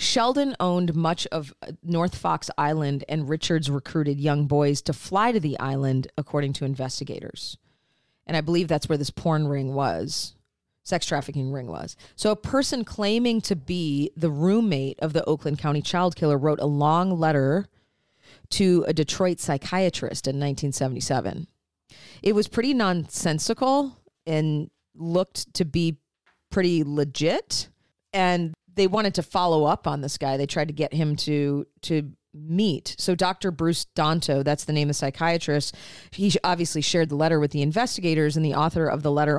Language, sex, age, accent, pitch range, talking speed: English, female, 40-59, American, 145-175 Hz, 165 wpm